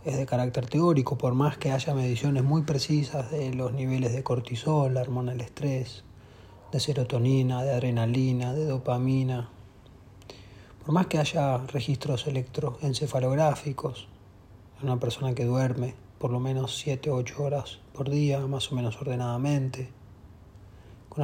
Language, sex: Spanish, male